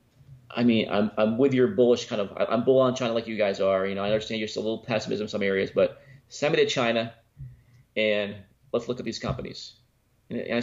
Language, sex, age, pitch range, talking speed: English, male, 30-49, 110-130 Hz, 230 wpm